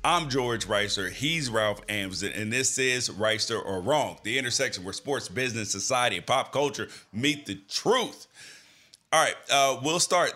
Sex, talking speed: male, 170 wpm